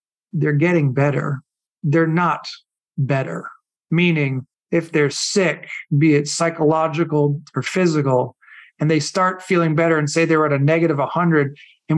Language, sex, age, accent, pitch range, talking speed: English, male, 40-59, American, 150-185 Hz, 140 wpm